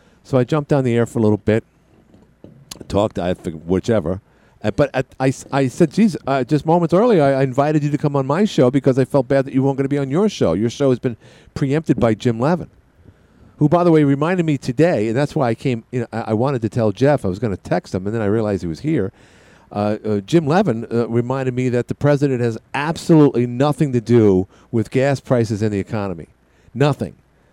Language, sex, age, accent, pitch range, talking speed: English, male, 50-69, American, 105-145 Hz, 240 wpm